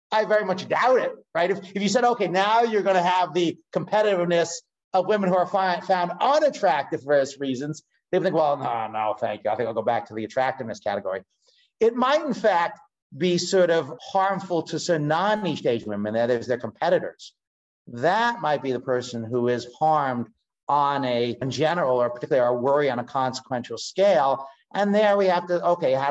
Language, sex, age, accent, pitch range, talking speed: English, male, 50-69, American, 130-180 Hz, 200 wpm